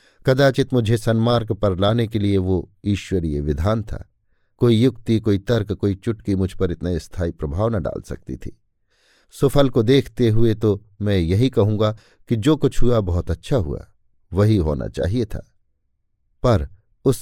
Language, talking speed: Hindi, 165 wpm